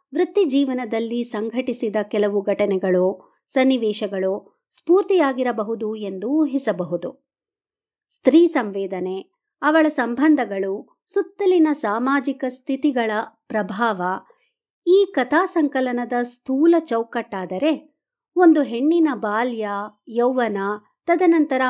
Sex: male